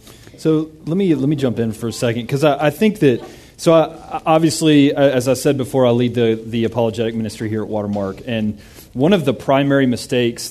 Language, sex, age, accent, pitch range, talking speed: English, male, 30-49, American, 115-150 Hz, 210 wpm